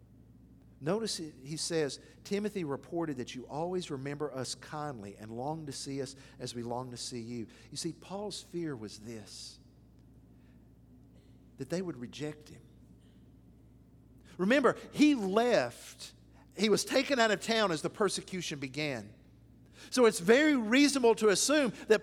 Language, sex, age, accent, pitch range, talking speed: English, male, 50-69, American, 145-245 Hz, 145 wpm